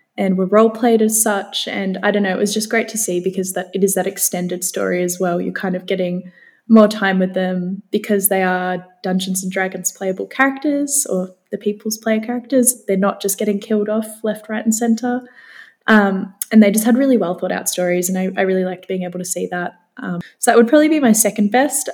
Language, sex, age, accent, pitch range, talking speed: English, female, 10-29, Australian, 185-225 Hz, 230 wpm